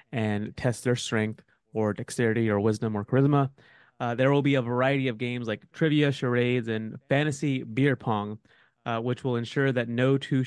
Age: 20-39